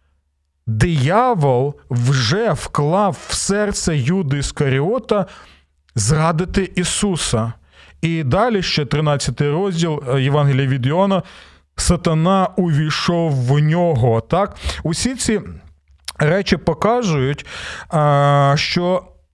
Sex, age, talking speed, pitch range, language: male, 40-59, 85 wpm, 130-180 Hz, Ukrainian